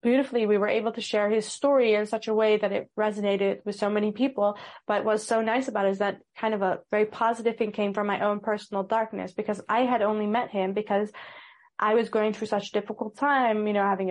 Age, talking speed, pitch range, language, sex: 20-39, 245 wpm, 200-235 Hz, English, female